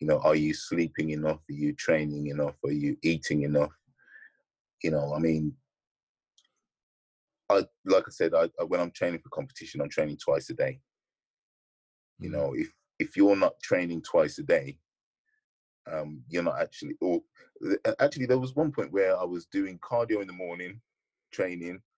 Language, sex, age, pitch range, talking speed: English, male, 20-39, 80-125 Hz, 170 wpm